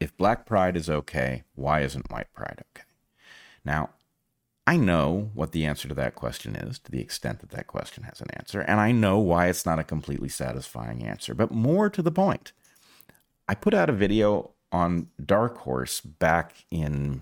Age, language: 40-59, English